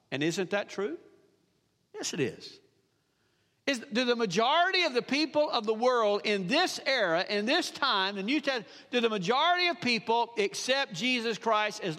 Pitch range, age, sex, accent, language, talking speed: 195-270 Hz, 50-69, male, American, English, 165 wpm